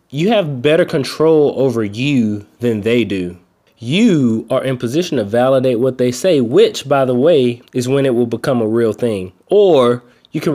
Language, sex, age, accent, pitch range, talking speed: English, male, 20-39, American, 120-160 Hz, 190 wpm